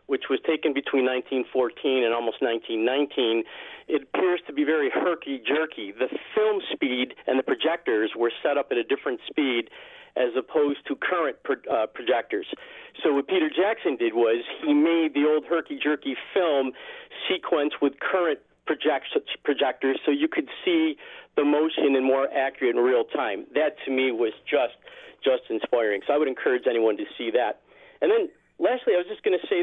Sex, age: male, 40-59